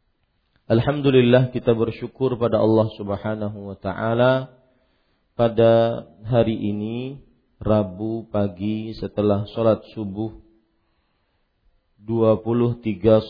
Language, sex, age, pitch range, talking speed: Malay, male, 40-59, 100-115 Hz, 75 wpm